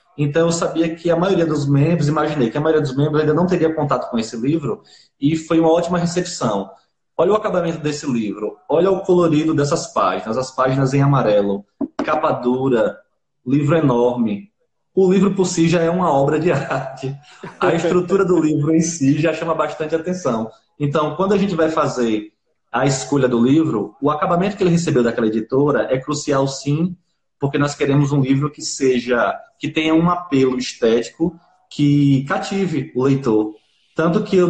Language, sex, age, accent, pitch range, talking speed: Portuguese, male, 20-39, Brazilian, 135-170 Hz, 180 wpm